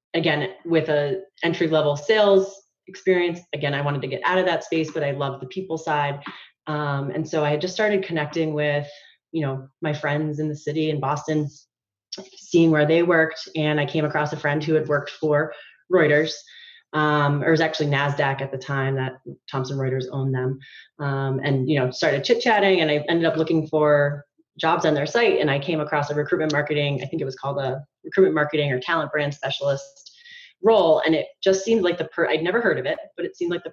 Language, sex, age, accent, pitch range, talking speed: English, female, 30-49, American, 140-165 Hz, 210 wpm